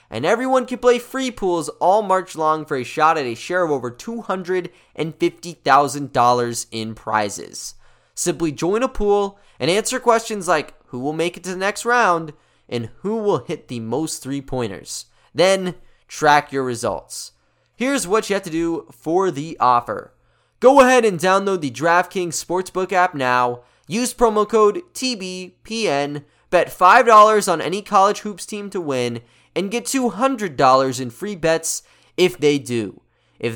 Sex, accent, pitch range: male, American, 125-205 Hz